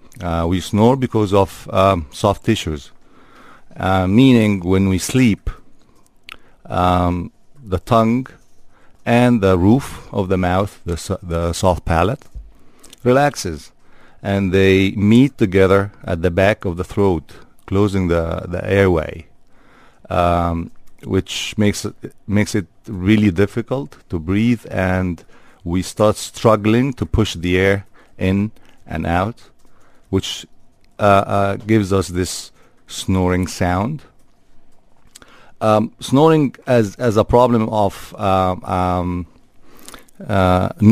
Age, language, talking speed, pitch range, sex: 50-69, English, 115 wpm, 90-110 Hz, male